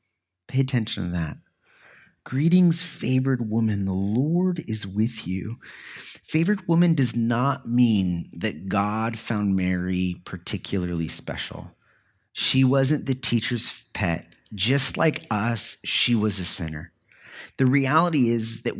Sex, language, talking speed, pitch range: male, English, 125 wpm, 95-130 Hz